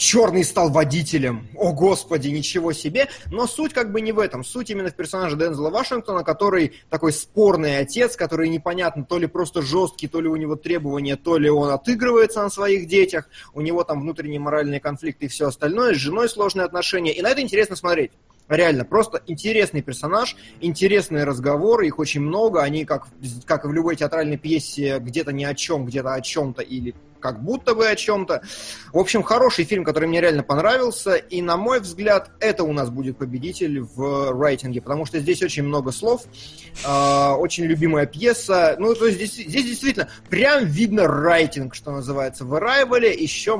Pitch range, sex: 145-200 Hz, male